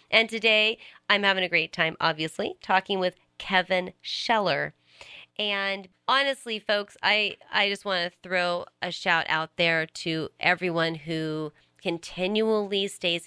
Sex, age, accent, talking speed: female, 30-49, American, 135 wpm